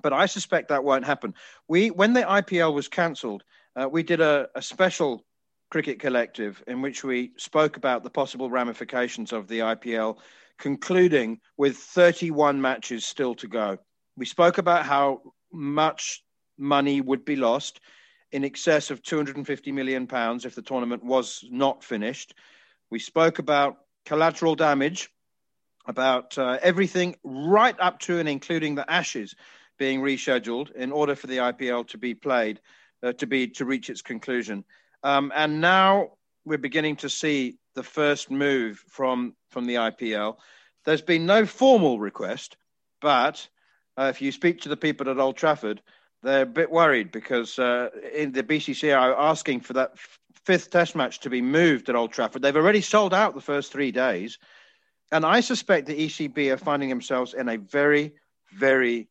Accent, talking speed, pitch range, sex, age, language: British, 165 wpm, 125-160 Hz, male, 40-59, English